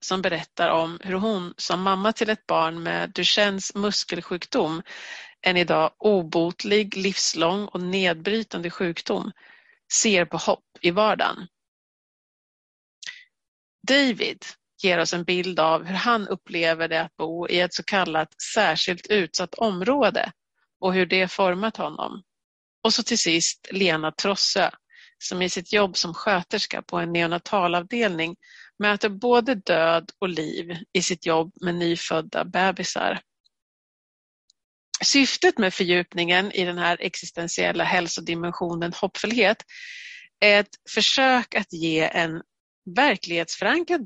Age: 40-59